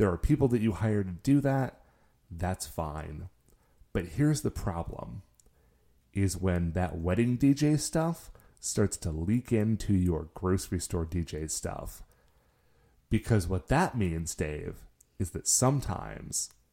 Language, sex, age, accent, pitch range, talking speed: English, male, 30-49, American, 85-125 Hz, 135 wpm